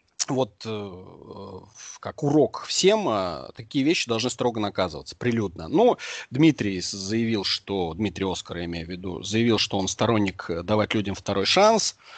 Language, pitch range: Russian, 105-160 Hz